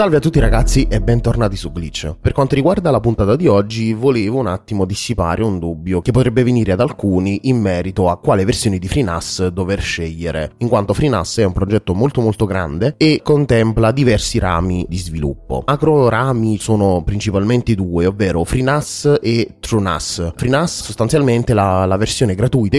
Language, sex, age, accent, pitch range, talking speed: Italian, male, 20-39, native, 95-125 Hz, 170 wpm